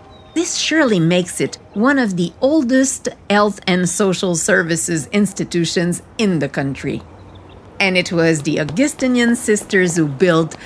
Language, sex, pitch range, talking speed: French, female, 165-235 Hz, 135 wpm